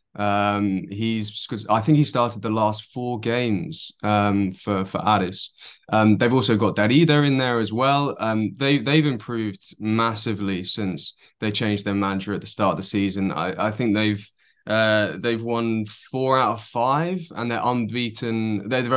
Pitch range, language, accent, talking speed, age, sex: 105-120 Hz, English, British, 175 wpm, 20-39, male